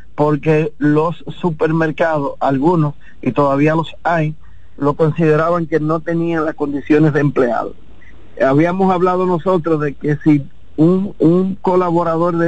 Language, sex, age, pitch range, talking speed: Spanish, male, 50-69, 150-170 Hz, 130 wpm